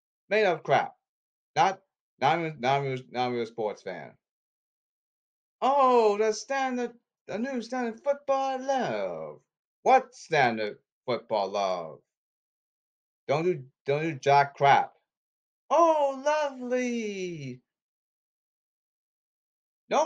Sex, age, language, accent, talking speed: male, 30-49, English, American, 110 wpm